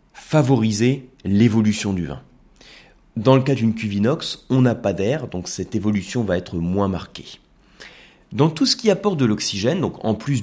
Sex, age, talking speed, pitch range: male, 30-49, 180 wpm, 100-130 Hz